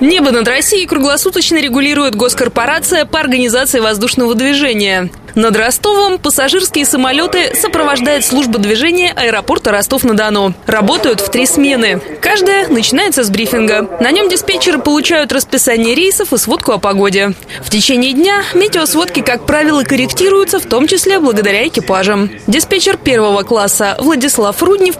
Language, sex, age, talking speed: Russian, female, 20-39, 130 wpm